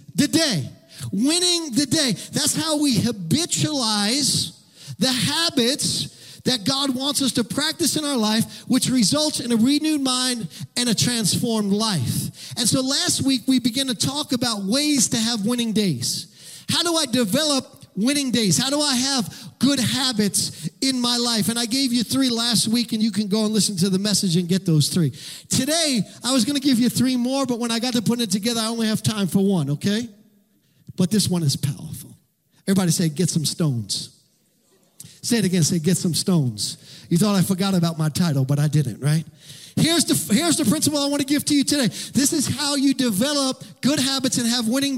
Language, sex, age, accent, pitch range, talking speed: English, male, 40-59, American, 185-265 Hz, 205 wpm